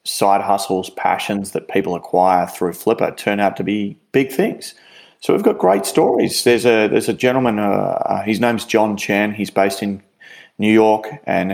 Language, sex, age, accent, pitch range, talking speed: English, male, 30-49, Australian, 95-110 Hz, 180 wpm